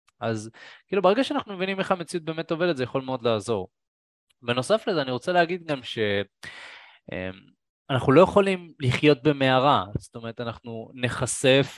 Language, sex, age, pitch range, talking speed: Hebrew, male, 20-39, 110-150 Hz, 145 wpm